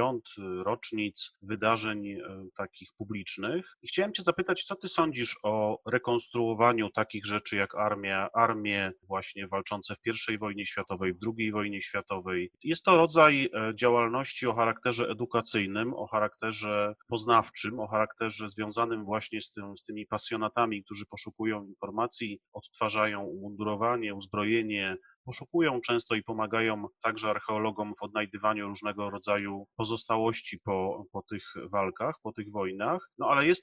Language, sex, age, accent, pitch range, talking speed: Polish, male, 30-49, native, 105-125 Hz, 130 wpm